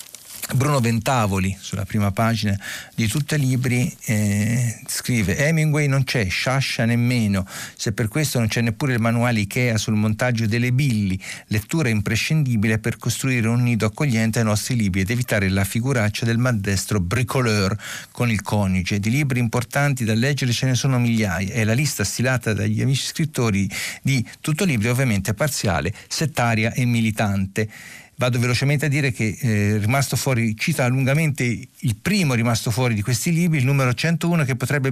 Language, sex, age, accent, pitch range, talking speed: Italian, male, 50-69, native, 110-140 Hz, 160 wpm